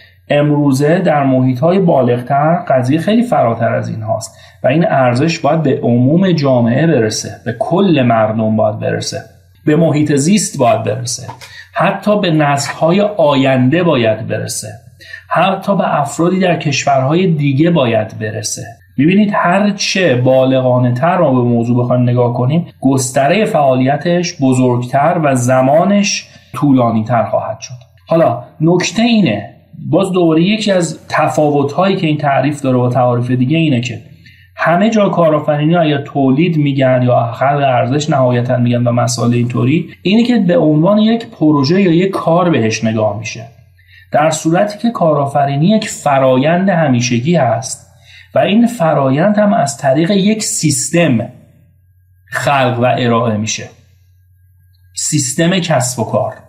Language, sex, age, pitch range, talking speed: Persian, male, 40-59, 120-170 Hz, 135 wpm